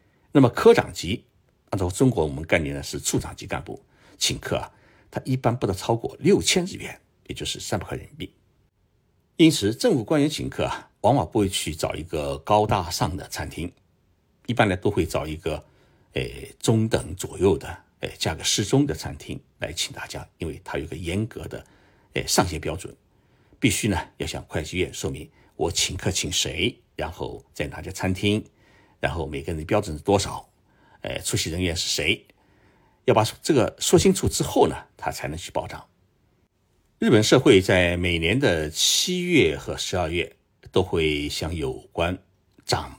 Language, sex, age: Chinese, male, 60-79